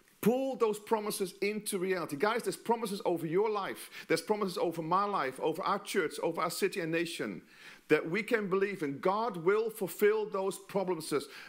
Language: English